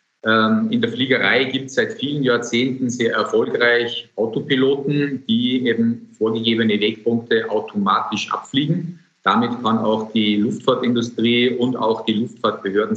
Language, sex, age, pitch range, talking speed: German, male, 50-69, 110-155 Hz, 120 wpm